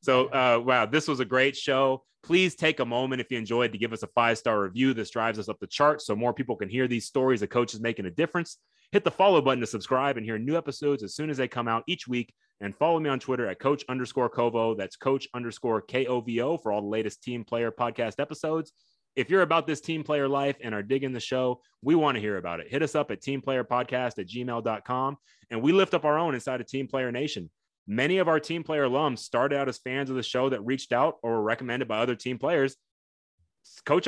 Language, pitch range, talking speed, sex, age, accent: English, 115-140 Hz, 245 wpm, male, 30-49, American